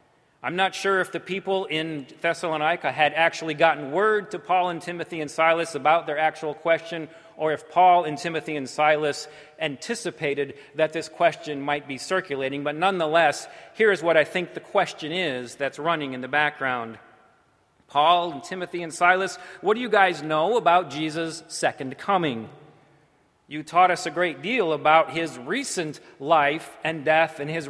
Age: 40-59